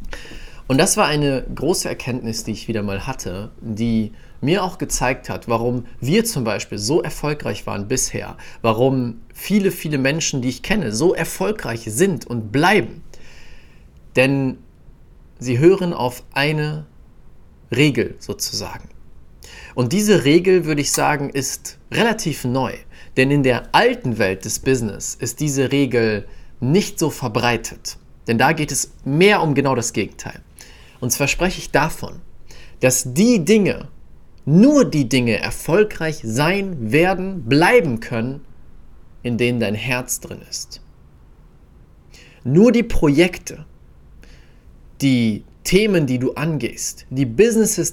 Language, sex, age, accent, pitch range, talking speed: German, male, 40-59, German, 115-165 Hz, 135 wpm